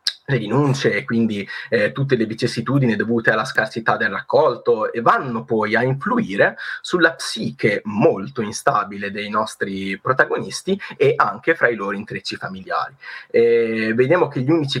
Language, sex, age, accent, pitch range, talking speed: Italian, male, 20-39, native, 105-140 Hz, 150 wpm